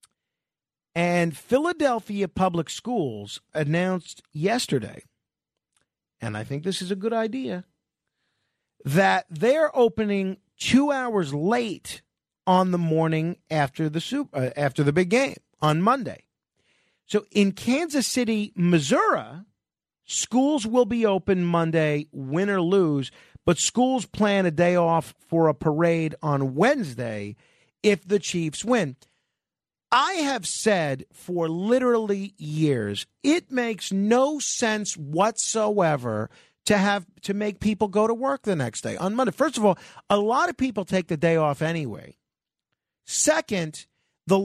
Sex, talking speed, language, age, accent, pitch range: male, 130 wpm, English, 40-59, American, 160-235 Hz